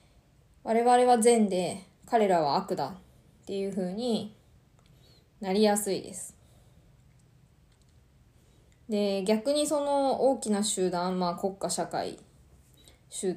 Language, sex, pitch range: Japanese, female, 185-230 Hz